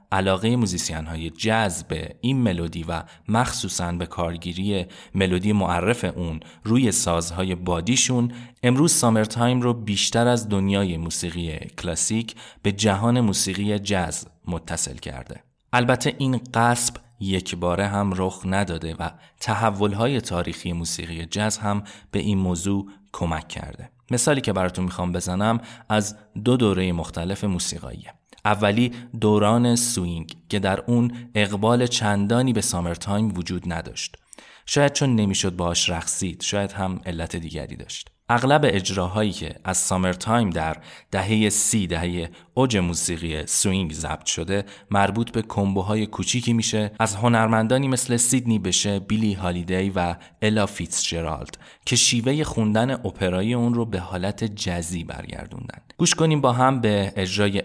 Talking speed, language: 135 wpm, Persian